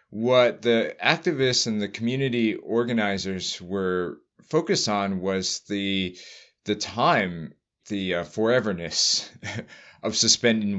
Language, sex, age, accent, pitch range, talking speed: English, male, 30-49, American, 95-115 Hz, 105 wpm